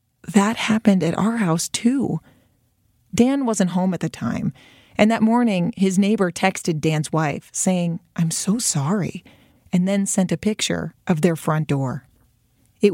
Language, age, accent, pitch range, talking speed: English, 30-49, American, 155-200 Hz, 160 wpm